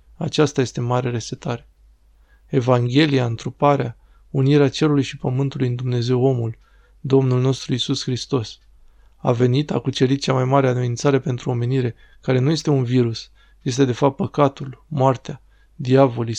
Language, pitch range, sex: Romanian, 125-140 Hz, male